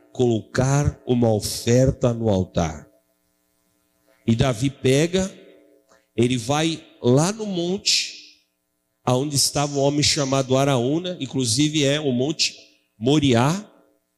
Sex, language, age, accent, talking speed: male, Portuguese, 50-69, Brazilian, 100 wpm